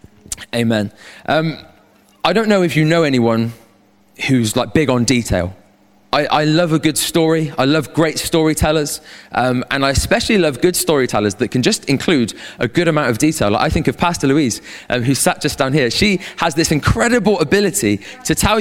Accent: British